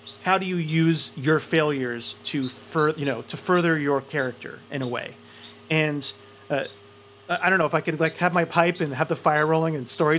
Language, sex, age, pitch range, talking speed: English, male, 30-49, 140-180 Hz, 205 wpm